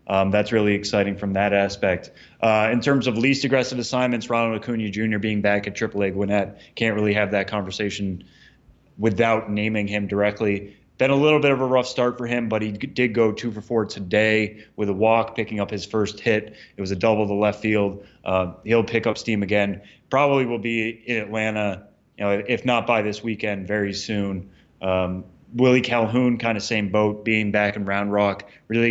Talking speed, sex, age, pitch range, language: 205 wpm, male, 20-39, 100-115 Hz, English